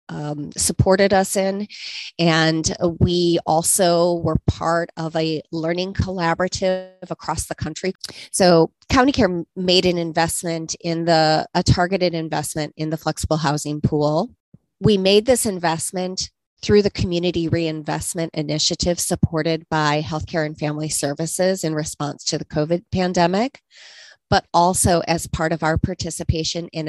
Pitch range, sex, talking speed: 160-180 Hz, female, 135 wpm